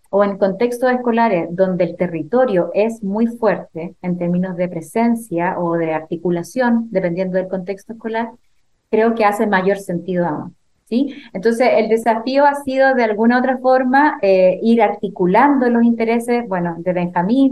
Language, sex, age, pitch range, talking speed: Spanish, female, 30-49, 185-230 Hz, 160 wpm